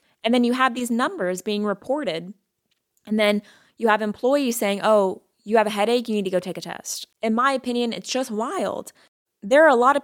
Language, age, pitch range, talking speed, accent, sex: English, 20-39, 185-220 Hz, 220 wpm, American, female